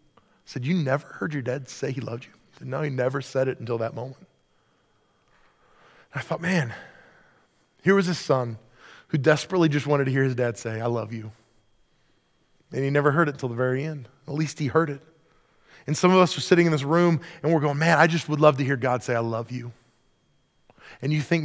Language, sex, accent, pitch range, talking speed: English, male, American, 120-155 Hz, 225 wpm